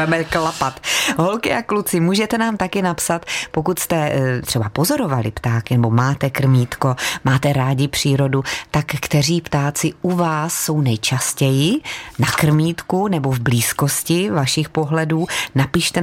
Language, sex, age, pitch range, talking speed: Czech, female, 30-49, 130-165 Hz, 125 wpm